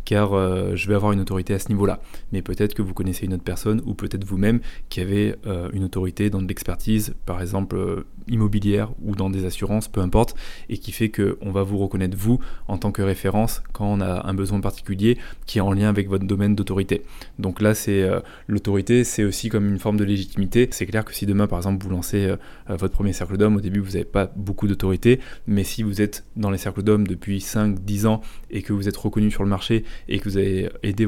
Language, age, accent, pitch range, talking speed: French, 20-39, French, 95-110 Hz, 235 wpm